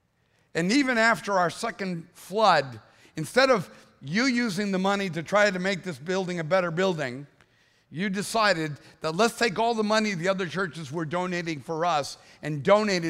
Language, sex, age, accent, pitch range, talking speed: English, male, 50-69, American, 160-215 Hz, 175 wpm